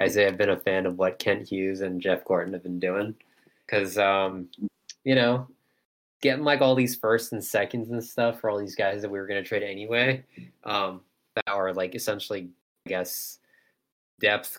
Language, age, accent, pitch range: English, 20-39, American, 95-125 Hz